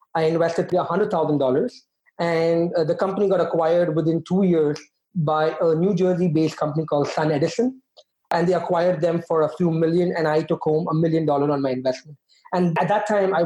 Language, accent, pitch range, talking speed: English, Indian, 155-185 Hz, 190 wpm